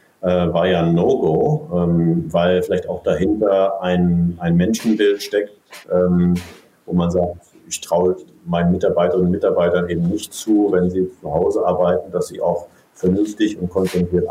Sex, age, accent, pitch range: male, 50-69, German, 90-100 Hz